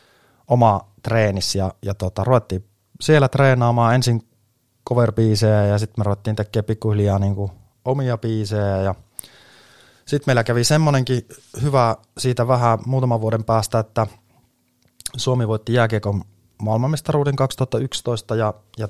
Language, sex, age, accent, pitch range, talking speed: Finnish, male, 20-39, native, 100-120 Hz, 120 wpm